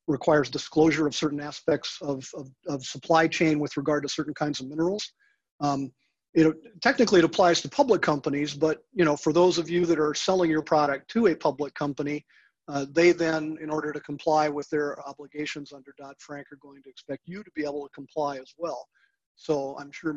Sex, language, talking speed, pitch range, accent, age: male, English, 200 wpm, 140-160 Hz, American, 40-59